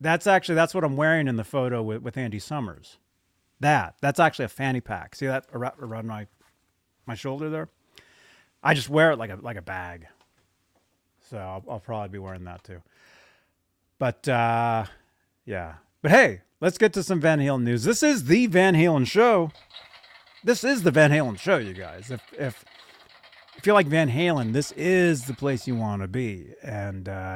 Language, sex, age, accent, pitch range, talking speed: English, male, 30-49, American, 110-165 Hz, 190 wpm